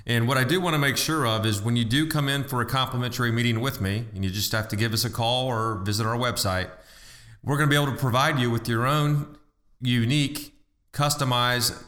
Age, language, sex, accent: 30-49, English, male, American